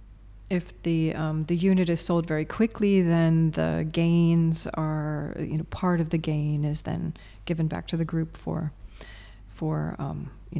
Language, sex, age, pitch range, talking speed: English, female, 30-49, 155-180 Hz, 170 wpm